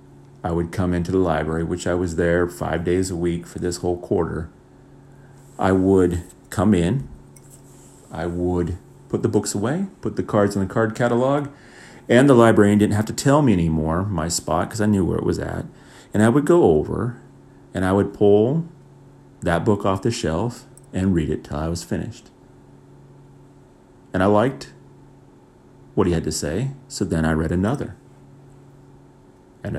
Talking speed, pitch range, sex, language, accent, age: 175 wpm, 85-105 Hz, male, English, American, 40-59